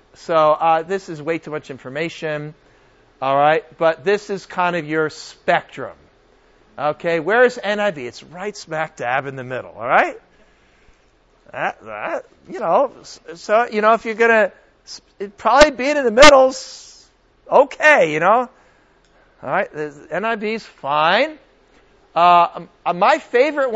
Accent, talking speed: American, 145 wpm